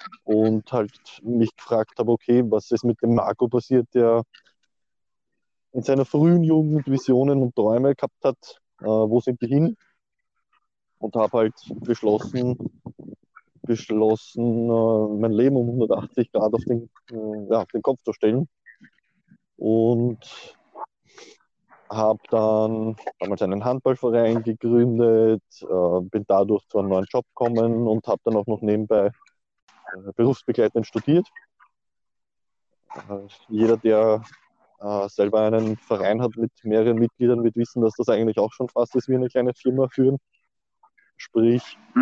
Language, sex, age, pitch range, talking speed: German, male, 20-39, 110-130 Hz, 130 wpm